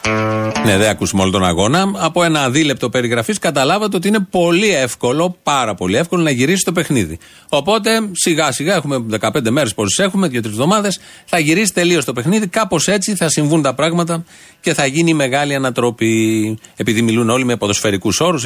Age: 40-59